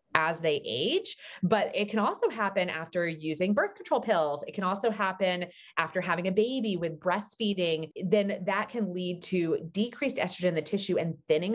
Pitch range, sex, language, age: 160-205 Hz, female, English, 30-49